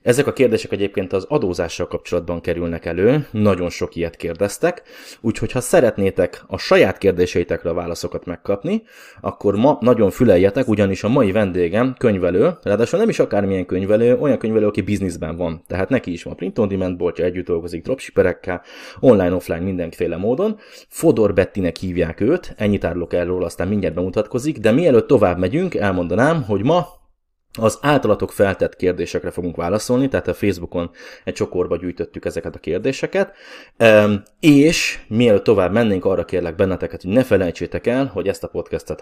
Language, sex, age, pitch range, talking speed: Hungarian, male, 20-39, 90-125 Hz, 155 wpm